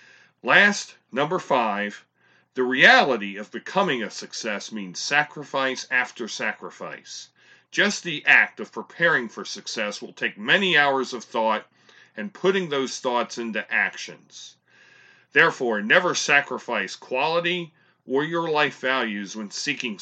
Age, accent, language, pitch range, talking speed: 40-59, American, English, 115-170 Hz, 125 wpm